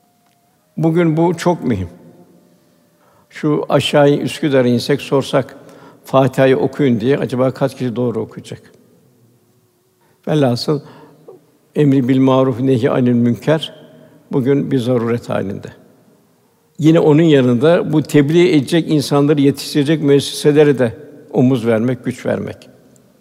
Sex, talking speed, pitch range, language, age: male, 105 wpm, 125-150 Hz, Turkish, 60-79